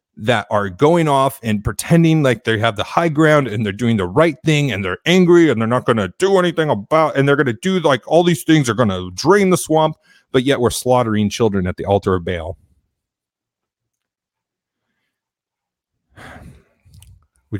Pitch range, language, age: 100-130 Hz, English, 30-49